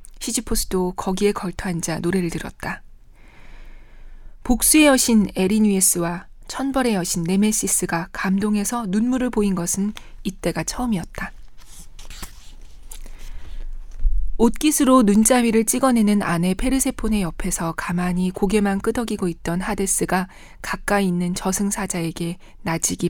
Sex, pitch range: female, 180-225 Hz